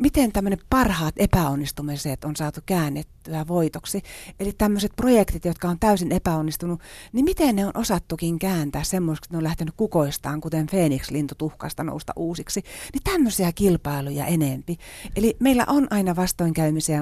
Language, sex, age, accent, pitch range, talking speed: Finnish, female, 40-59, native, 145-190 Hz, 145 wpm